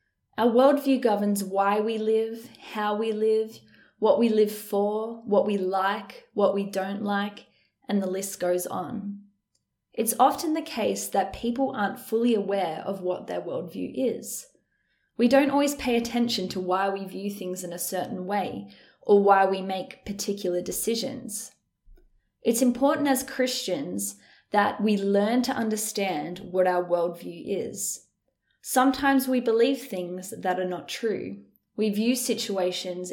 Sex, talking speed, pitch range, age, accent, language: female, 150 wpm, 185-230 Hz, 10-29, Australian, English